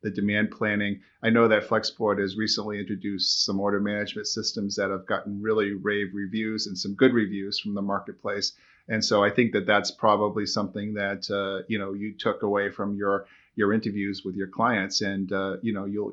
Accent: American